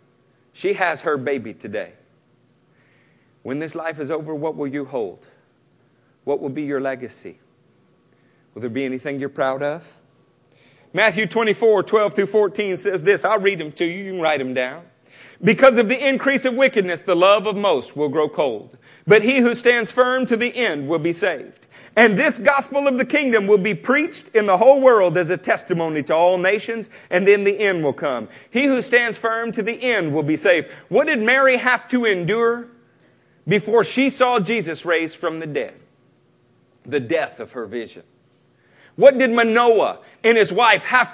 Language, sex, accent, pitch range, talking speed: English, male, American, 160-245 Hz, 185 wpm